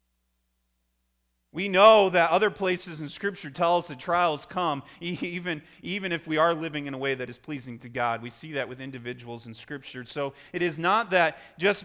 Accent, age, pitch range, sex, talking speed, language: American, 30-49, 125-165 Hz, male, 200 wpm, English